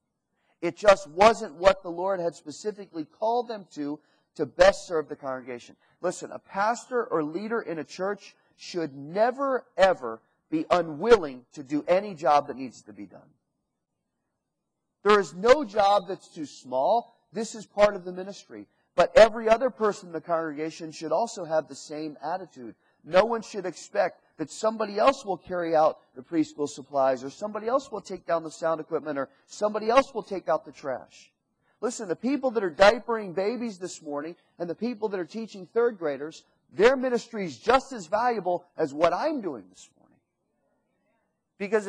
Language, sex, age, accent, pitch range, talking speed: English, male, 40-59, American, 155-220 Hz, 180 wpm